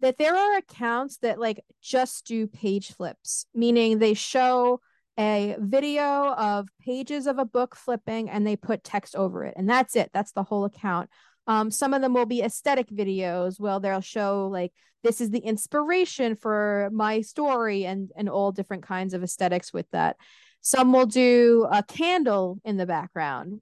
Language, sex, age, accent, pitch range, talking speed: English, female, 20-39, American, 200-255 Hz, 180 wpm